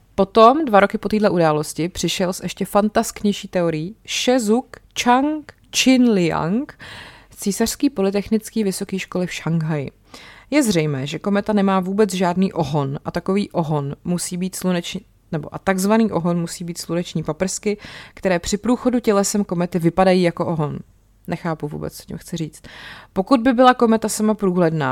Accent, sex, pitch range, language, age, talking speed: native, female, 160-195 Hz, Czech, 20-39, 150 wpm